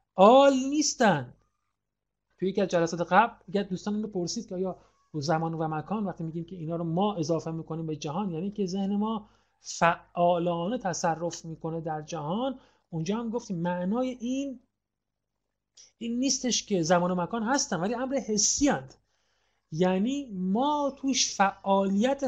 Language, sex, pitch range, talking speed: Persian, male, 175-225 Hz, 145 wpm